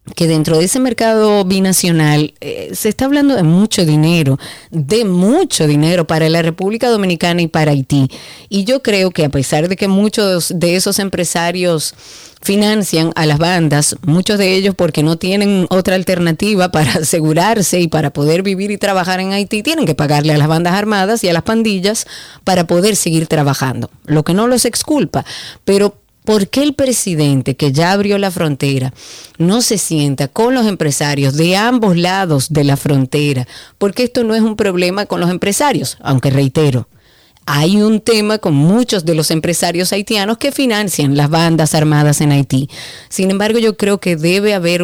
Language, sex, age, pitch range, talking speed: Spanish, female, 30-49, 155-200 Hz, 180 wpm